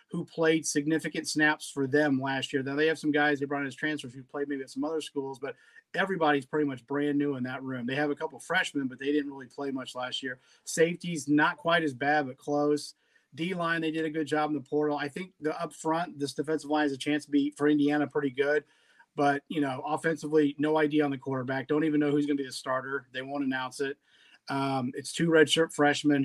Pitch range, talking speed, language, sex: 140-155 Hz, 245 wpm, English, male